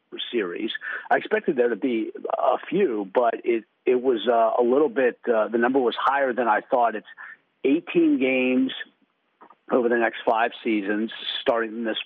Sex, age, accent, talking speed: male, 50-69, American, 170 wpm